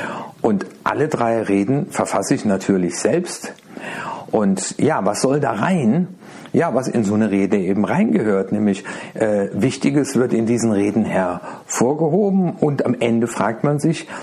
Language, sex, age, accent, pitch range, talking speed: German, male, 60-79, German, 105-145 Hz, 150 wpm